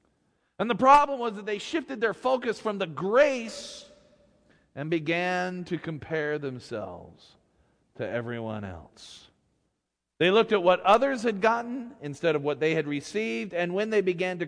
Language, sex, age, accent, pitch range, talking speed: English, male, 40-59, American, 145-190 Hz, 160 wpm